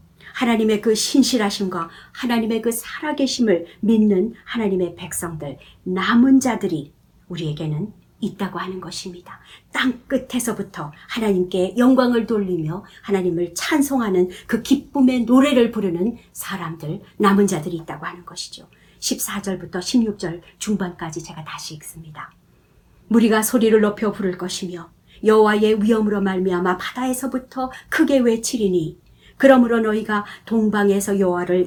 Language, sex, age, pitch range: Korean, male, 50-69, 180-230 Hz